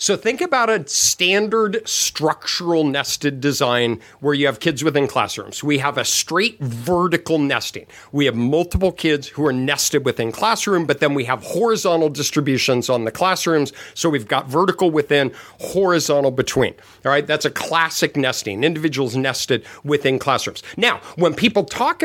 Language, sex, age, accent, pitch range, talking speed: English, male, 50-69, American, 135-175 Hz, 160 wpm